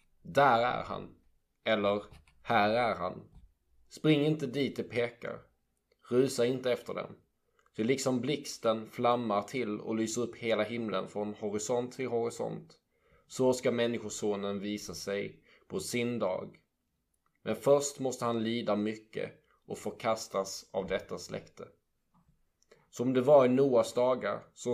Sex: male